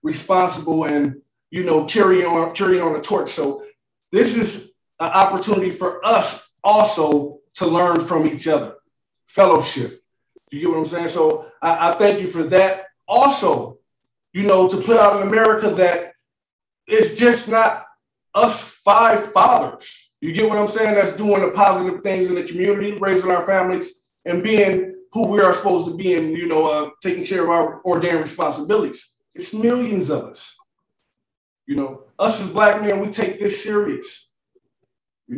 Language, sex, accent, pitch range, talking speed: English, male, American, 170-210 Hz, 170 wpm